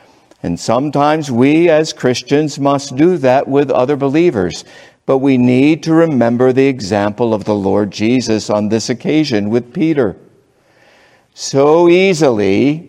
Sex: male